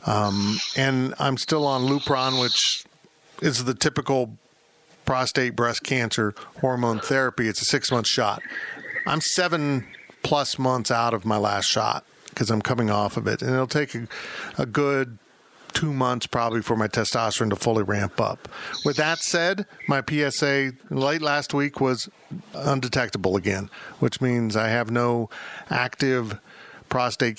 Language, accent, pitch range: English, American, 110-135 Hz